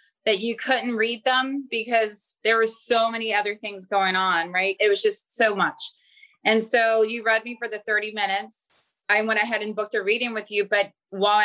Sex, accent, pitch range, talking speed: female, American, 195-230 Hz, 210 wpm